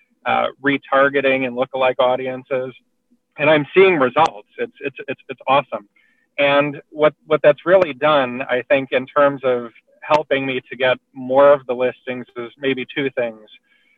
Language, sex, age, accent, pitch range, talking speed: English, male, 40-59, American, 125-160 Hz, 160 wpm